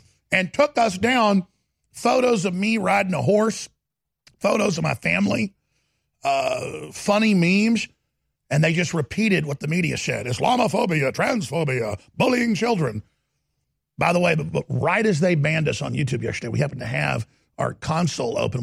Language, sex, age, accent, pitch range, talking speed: English, male, 50-69, American, 135-190 Hz, 150 wpm